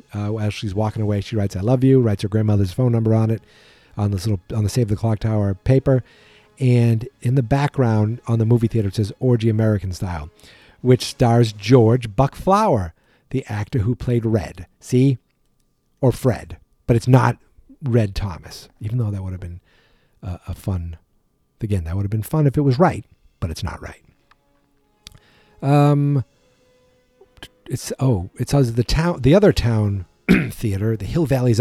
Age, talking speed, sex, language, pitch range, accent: 50-69, 180 wpm, male, English, 100-125 Hz, American